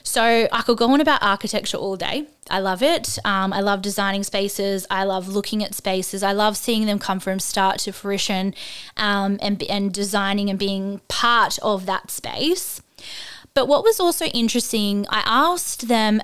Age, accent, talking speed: 20-39, Australian, 180 wpm